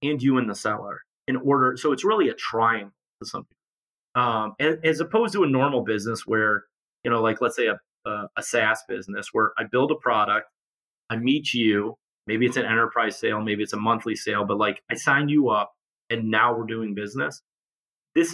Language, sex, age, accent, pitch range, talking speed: English, male, 30-49, American, 110-140 Hz, 200 wpm